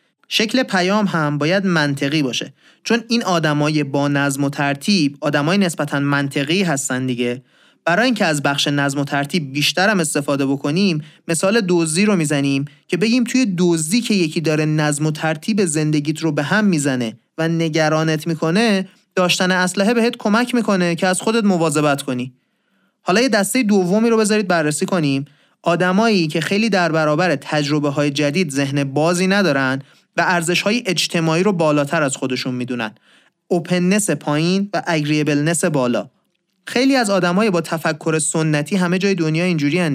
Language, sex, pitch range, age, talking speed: Persian, male, 145-195 Hz, 30-49, 155 wpm